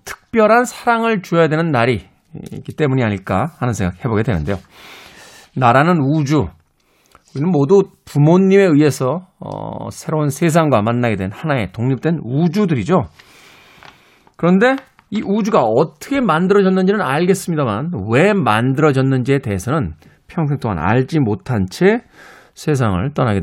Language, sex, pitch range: Korean, male, 125-185 Hz